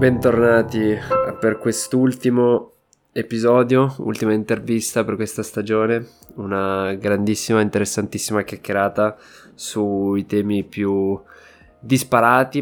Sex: male